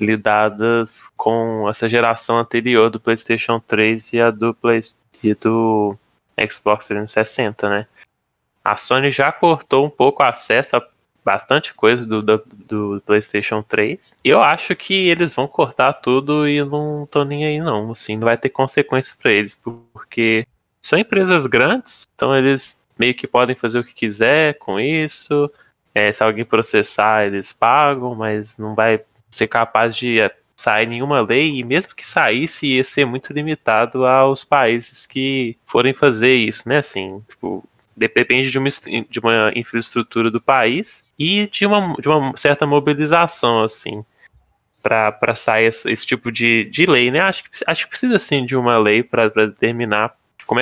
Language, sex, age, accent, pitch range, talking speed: Portuguese, male, 10-29, Brazilian, 110-140 Hz, 160 wpm